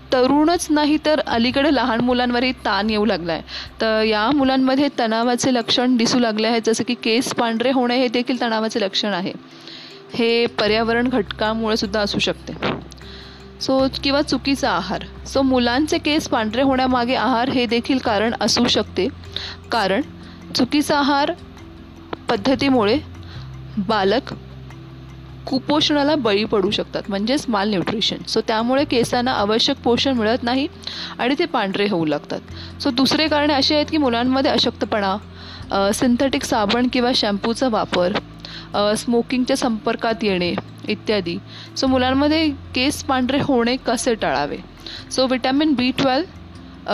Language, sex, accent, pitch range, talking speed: English, female, Indian, 210-270 Hz, 140 wpm